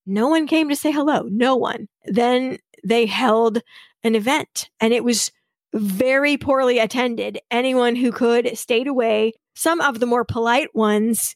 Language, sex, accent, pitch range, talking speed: English, female, American, 225-270 Hz, 160 wpm